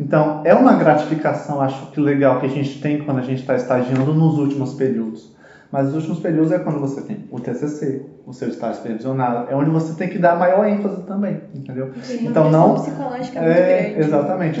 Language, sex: Portuguese, male